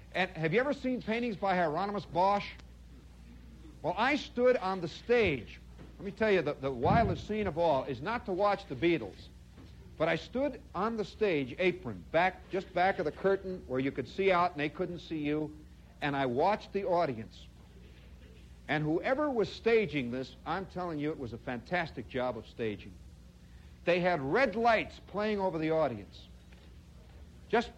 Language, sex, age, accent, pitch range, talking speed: English, male, 60-79, American, 125-215 Hz, 180 wpm